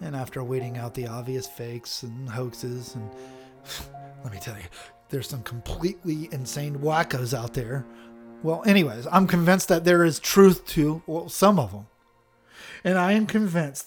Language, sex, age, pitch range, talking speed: English, male, 30-49, 120-170 Hz, 160 wpm